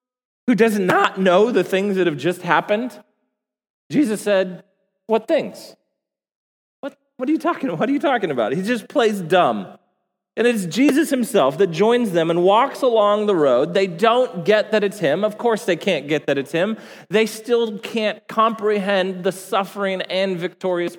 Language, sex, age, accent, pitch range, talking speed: English, male, 40-59, American, 175-235 Hz, 175 wpm